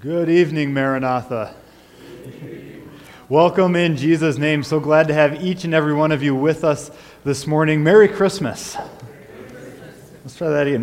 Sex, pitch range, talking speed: male, 145-185 Hz, 150 wpm